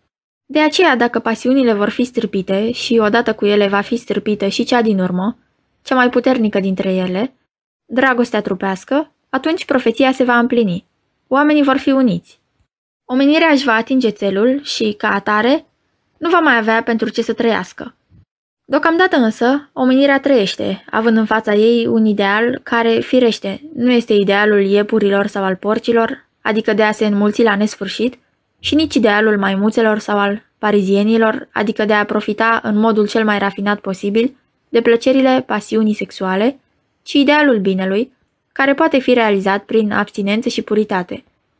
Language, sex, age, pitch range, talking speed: Romanian, female, 20-39, 210-260 Hz, 155 wpm